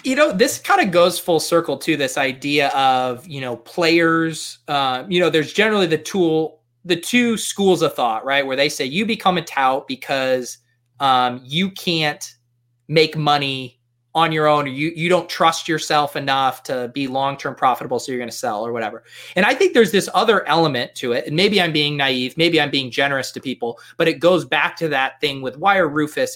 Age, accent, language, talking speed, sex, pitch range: 30-49, American, English, 210 wpm, male, 140-190 Hz